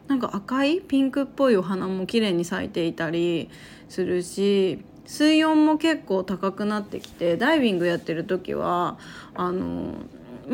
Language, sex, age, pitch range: Japanese, female, 30-49, 180-220 Hz